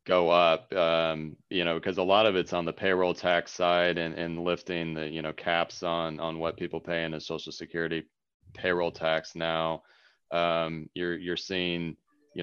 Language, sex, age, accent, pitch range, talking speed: English, male, 30-49, American, 80-90 Hz, 190 wpm